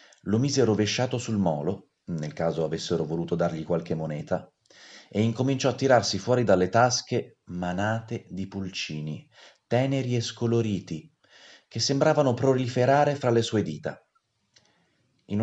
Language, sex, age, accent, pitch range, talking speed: Italian, male, 30-49, native, 90-125 Hz, 130 wpm